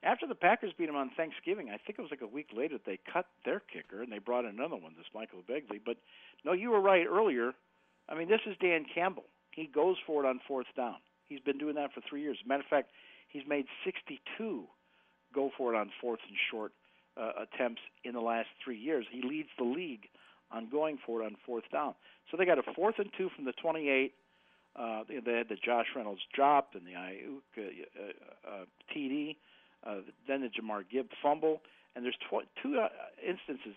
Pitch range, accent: 115-155 Hz, American